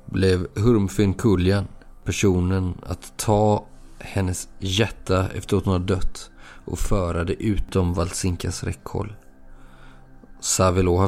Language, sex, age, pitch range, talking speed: Swedish, male, 30-49, 90-100 Hz, 105 wpm